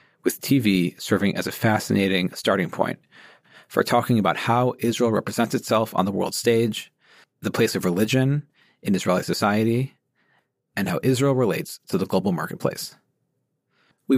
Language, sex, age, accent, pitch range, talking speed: English, male, 40-59, American, 110-135 Hz, 150 wpm